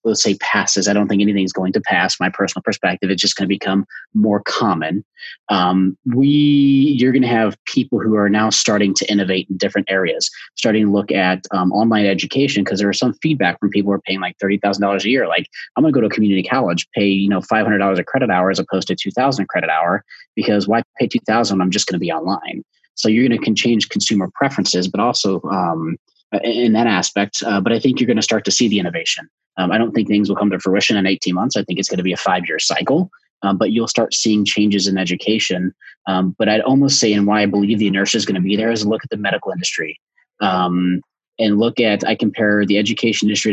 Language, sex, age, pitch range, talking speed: English, male, 30-49, 95-110 Hz, 250 wpm